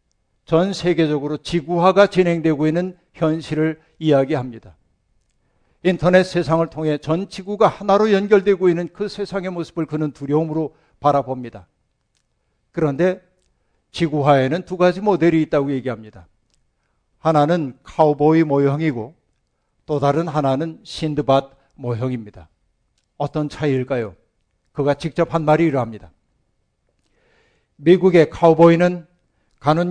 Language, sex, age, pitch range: Korean, male, 50-69, 145-175 Hz